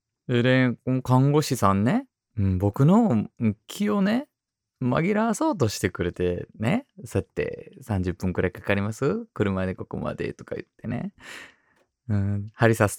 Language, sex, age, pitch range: Japanese, male, 20-39, 100-130 Hz